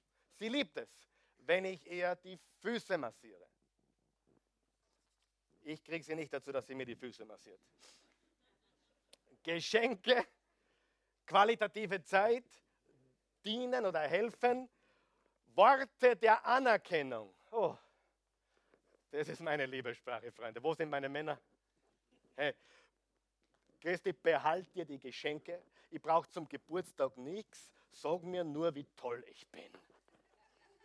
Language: German